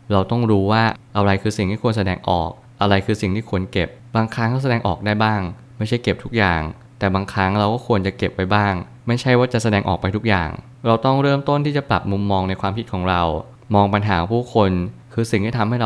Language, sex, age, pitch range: Thai, male, 20-39, 100-120 Hz